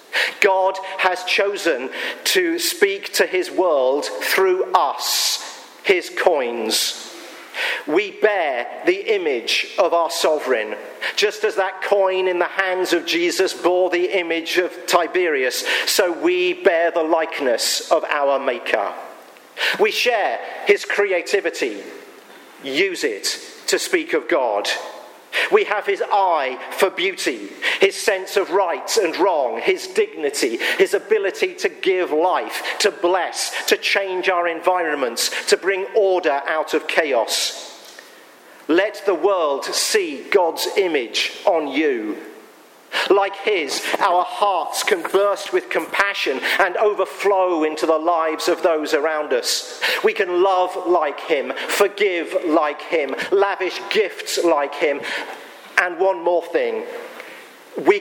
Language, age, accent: English, 50-69, British